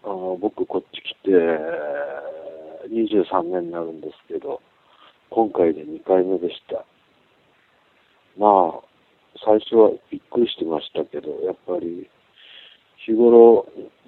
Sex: male